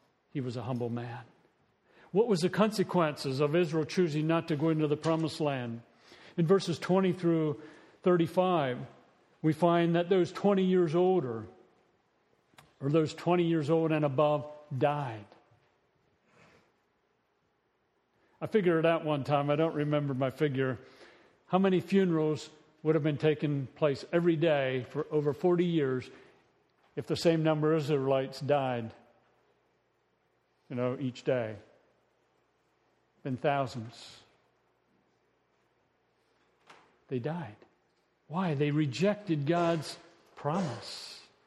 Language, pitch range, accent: English, 140-175 Hz, American